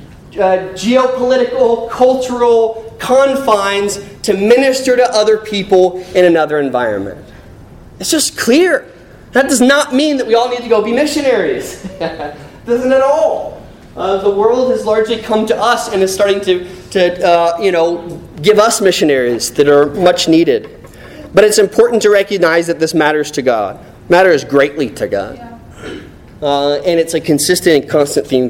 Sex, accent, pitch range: male, American, 150-230 Hz